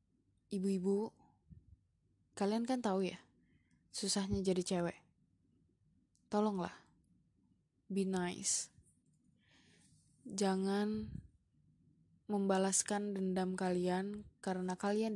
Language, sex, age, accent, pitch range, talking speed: Indonesian, female, 20-39, native, 185-205 Hz, 65 wpm